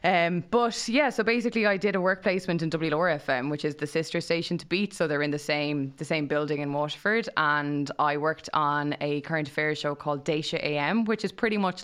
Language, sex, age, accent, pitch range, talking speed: English, female, 20-39, Irish, 150-175 Hz, 225 wpm